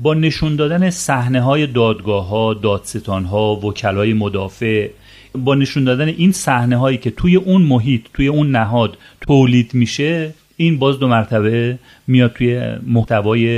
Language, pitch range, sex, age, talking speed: Persian, 110-135 Hz, male, 40-59, 150 wpm